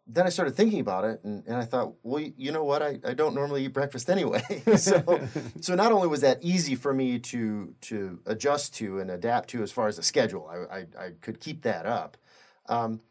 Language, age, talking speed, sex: English, 30-49, 230 wpm, male